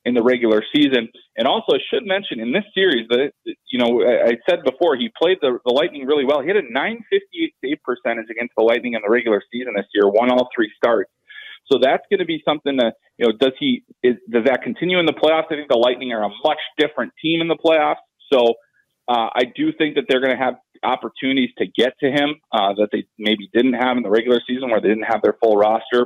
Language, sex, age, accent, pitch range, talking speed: English, male, 30-49, American, 115-155 Hz, 245 wpm